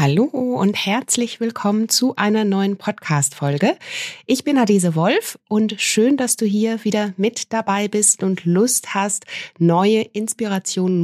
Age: 30-49